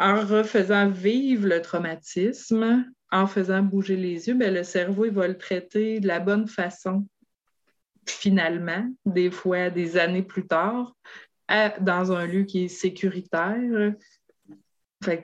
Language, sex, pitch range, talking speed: French, female, 170-205 Hz, 125 wpm